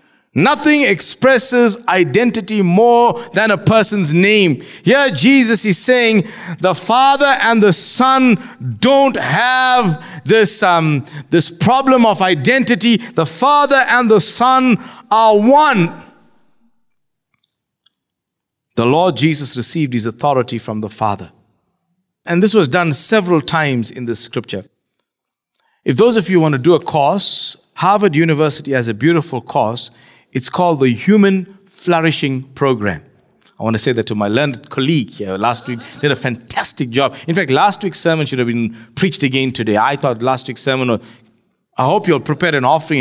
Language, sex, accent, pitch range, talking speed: English, male, South African, 125-210 Hz, 150 wpm